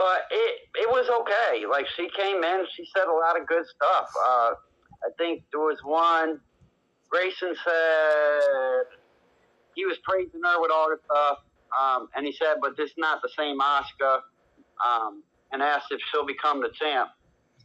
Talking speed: 175 wpm